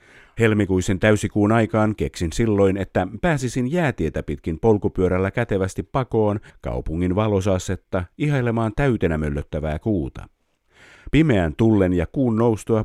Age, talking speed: 50-69, 105 wpm